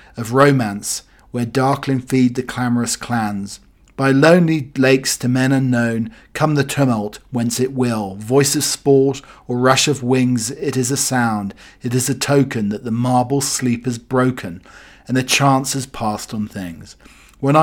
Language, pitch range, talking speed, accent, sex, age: English, 120-140 Hz, 165 wpm, British, male, 40-59